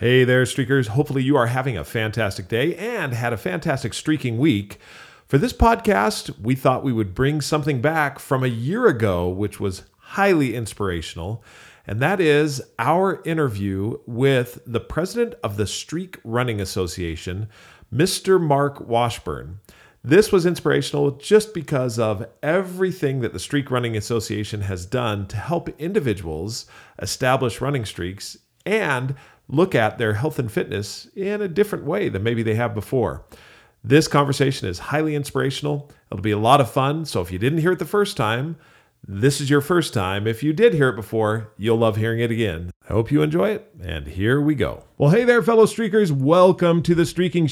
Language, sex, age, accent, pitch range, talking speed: English, male, 40-59, American, 110-155 Hz, 175 wpm